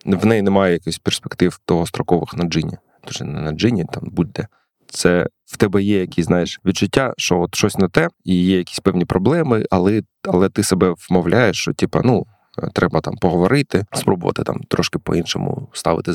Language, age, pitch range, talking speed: Ukrainian, 20-39, 90-105 Hz, 180 wpm